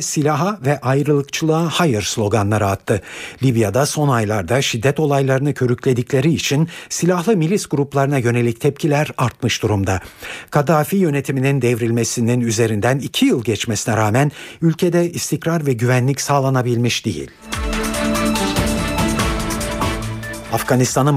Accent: native